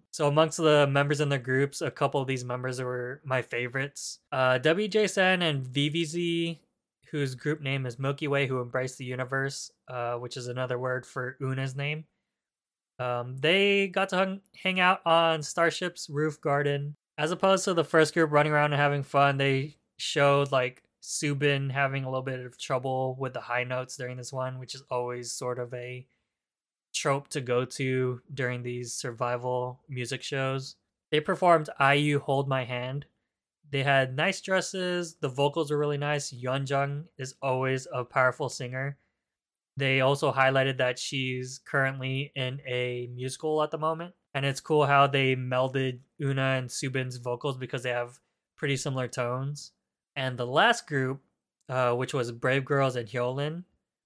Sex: male